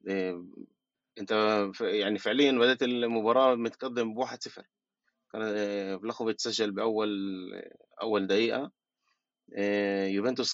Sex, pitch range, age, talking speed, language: male, 100-130 Hz, 20-39, 85 wpm, Arabic